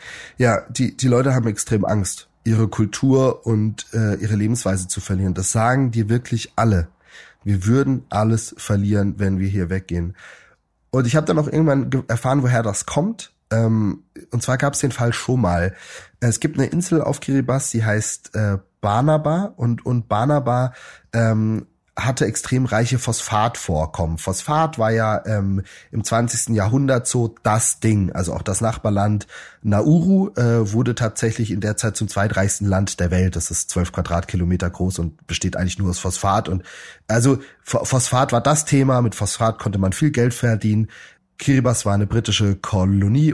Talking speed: 165 wpm